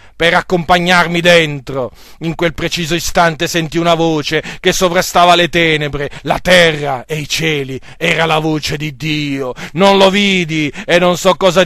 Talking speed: 160 wpm